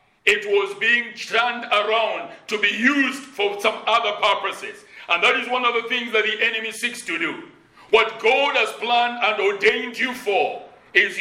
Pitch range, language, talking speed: 210-250 Hz, English, 180 wpm